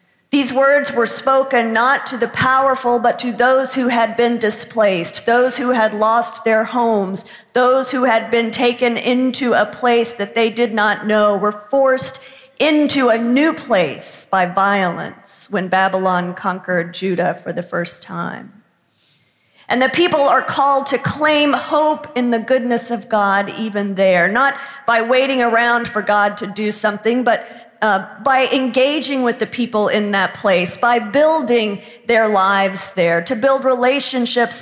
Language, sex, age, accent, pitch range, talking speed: English, female, 50-69, American, 205-255 Hz, 160 wpm